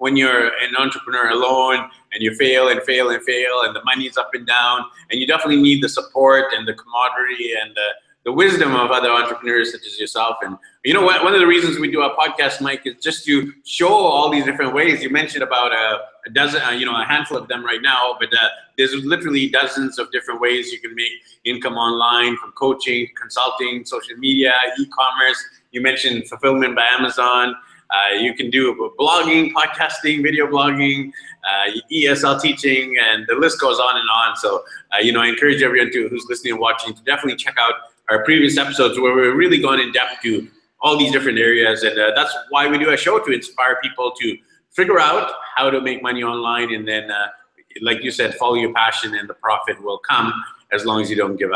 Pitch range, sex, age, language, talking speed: 120-145 Hz, male, 20-39, English, 210 wpm